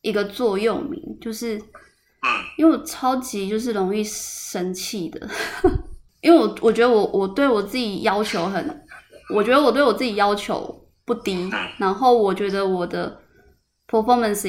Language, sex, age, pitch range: Chinese, female, 20-39, 195-240 Hz